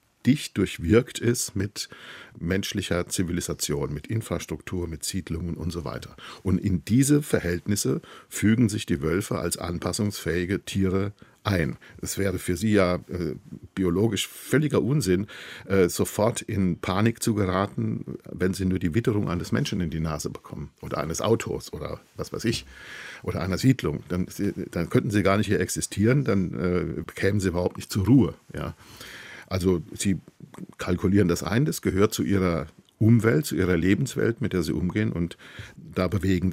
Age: 50-69